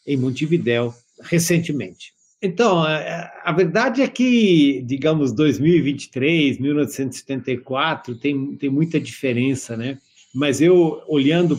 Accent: Brazilian